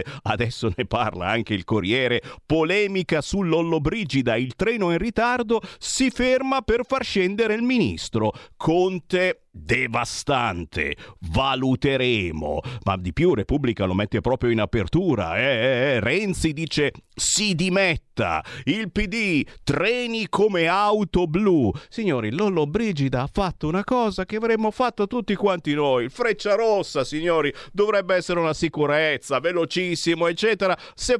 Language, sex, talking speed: Italian, male, 130 wpm